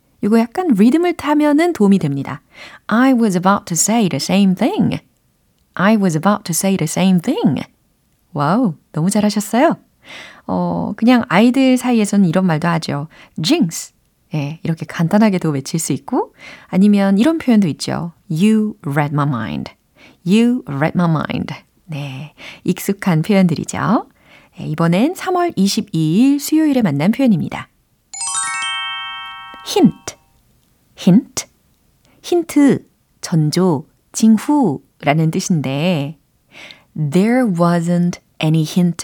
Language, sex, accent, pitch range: Korean, female, native, 165-235 Hz